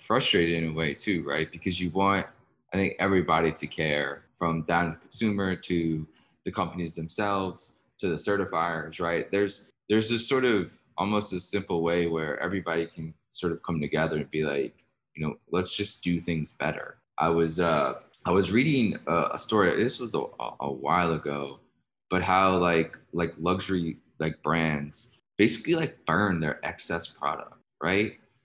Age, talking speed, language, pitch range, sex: 20-39, 170 wpm, English, 80-95 Hz, male